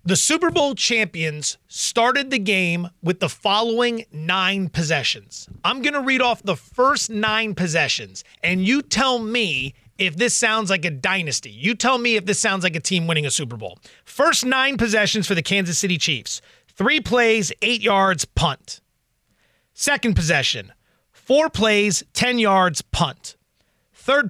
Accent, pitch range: American, 160-225 Hz